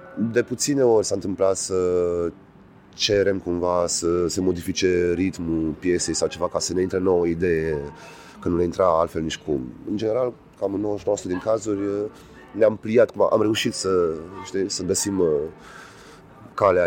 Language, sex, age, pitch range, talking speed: Romanian, male, 30-49, 90-110 Hz, 165 wpm